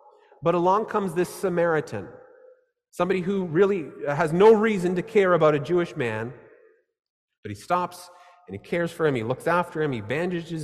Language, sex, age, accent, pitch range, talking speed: English, male, 30-49, American, 155-210 Hz, 175 wpm